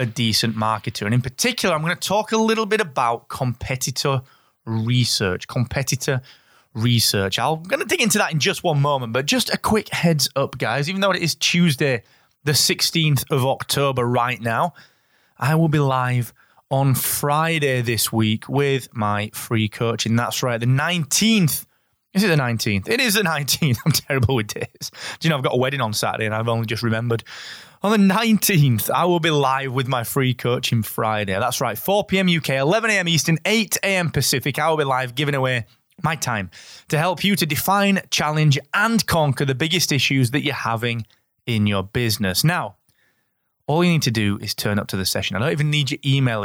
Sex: male